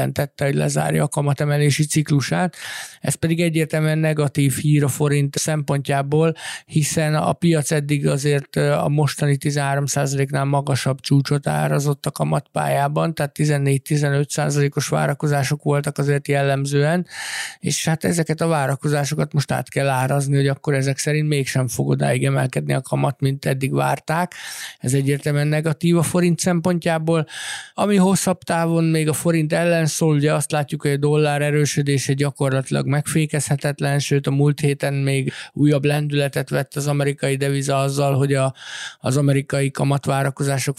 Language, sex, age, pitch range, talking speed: Hungarian, male, 50-69, 140-155 Hz, 140 wpm